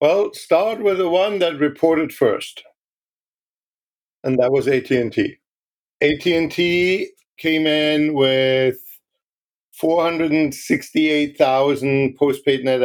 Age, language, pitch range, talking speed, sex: 50-69, English, 125-150 Hz, 110 wpm, male